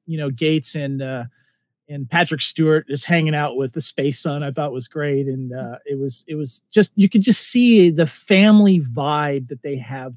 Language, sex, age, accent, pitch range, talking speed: English, male, 40-59, American, 135-160 Hz, 210 wpm